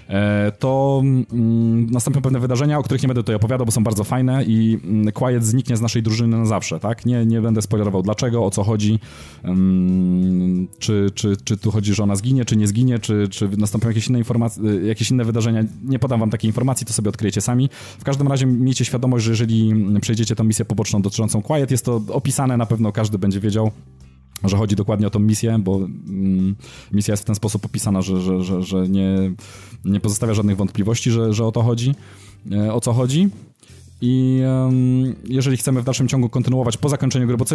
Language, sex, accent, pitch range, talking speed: Polish, male, native, 105-125 Hz, 200 wpm